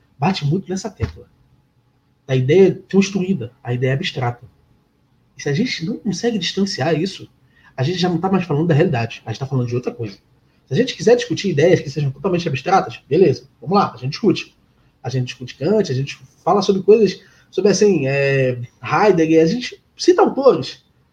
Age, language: 20-39, Portuguese